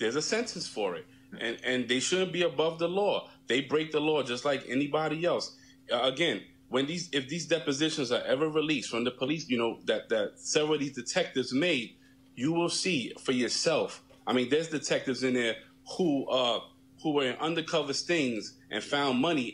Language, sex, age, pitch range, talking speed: English, male, 30-49, 130-160 Hz, 195 wpm